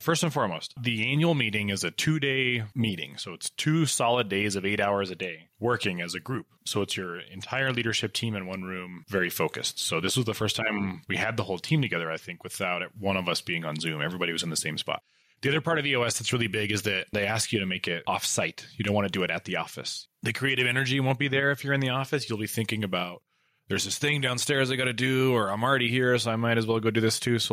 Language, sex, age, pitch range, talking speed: English, male, 20-39, 95-130 Hz, 275 wpm